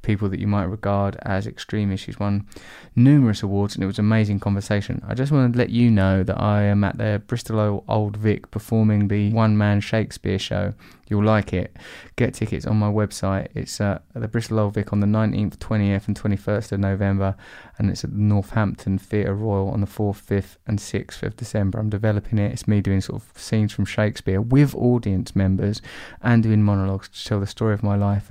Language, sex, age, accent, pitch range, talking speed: English, male, 20-39, British, 100-115 Hz, 210 wpm